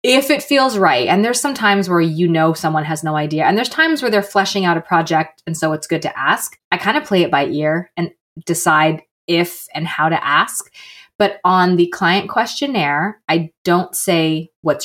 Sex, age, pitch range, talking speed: female, 20-39, 155-195 Hz, 215 wpm